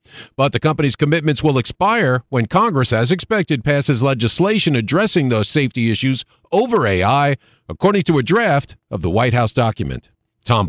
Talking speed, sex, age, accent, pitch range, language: 155 wpm, male, 50-69, American, 110-150 Hz, English